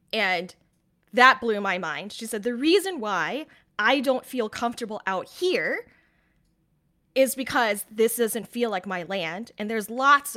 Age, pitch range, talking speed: 10-29, 195-290 Hz, 155 wpm